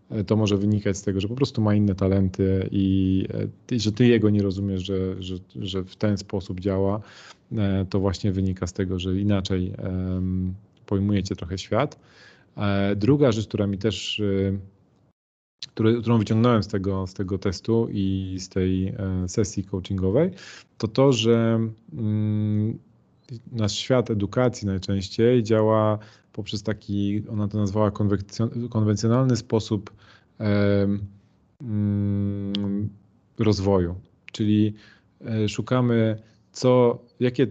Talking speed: 115 wpm